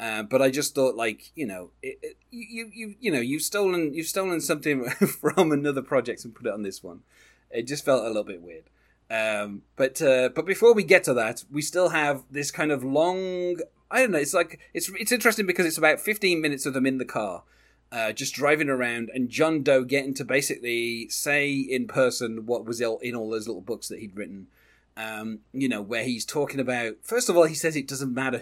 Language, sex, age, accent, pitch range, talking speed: English, male, 30-49, British, 110-150 Hz, 225 wpm